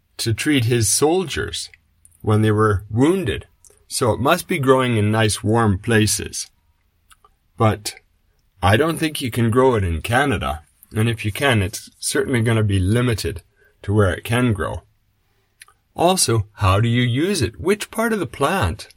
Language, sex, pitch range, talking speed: English, male, 95-120 Hz, 170 wpm